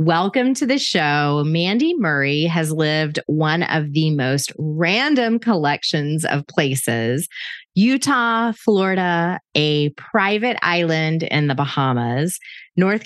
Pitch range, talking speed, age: 150-220 Hz, 115 wpm, 30-49